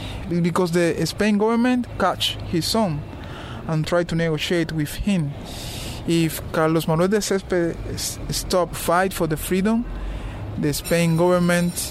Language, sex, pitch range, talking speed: English, male, 135-170 Hz, 130 wpm